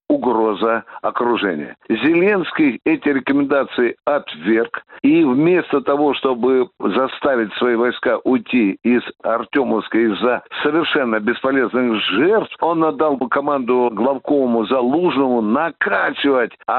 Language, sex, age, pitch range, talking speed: Russian, male, 60-79, 130-160 Hz, 95 wpm